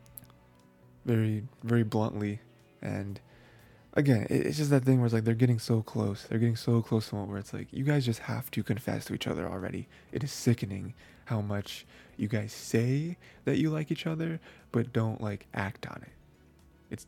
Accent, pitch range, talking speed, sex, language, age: American, 100-125 Hz, 195 wpm, male, English, 20-39